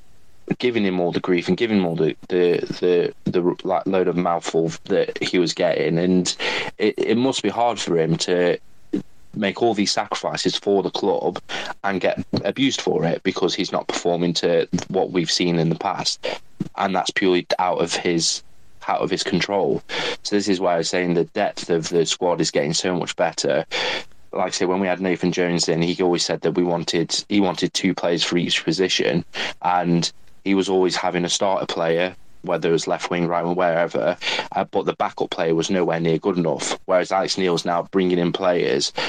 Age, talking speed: 30-49, 205 wpm